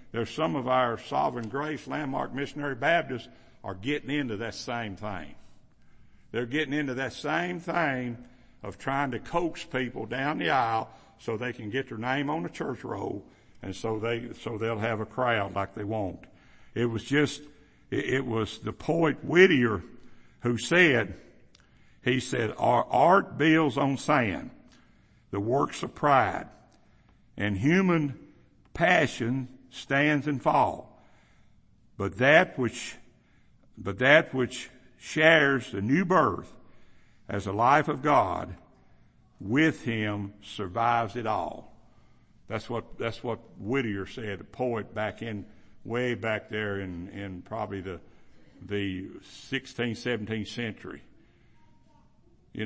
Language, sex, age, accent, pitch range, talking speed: English, male, 60-79, American, 110-140 Hz, 135 wpm